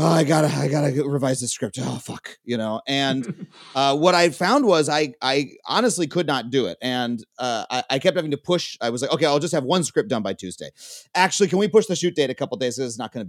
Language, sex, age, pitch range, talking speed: English, male, 30-49, 125-175 Hz, 270 wpm